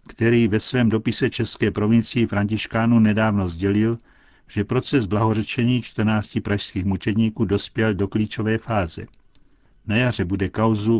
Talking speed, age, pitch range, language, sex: 125 wpm, 60-79, 100-115 Hz, Czech, male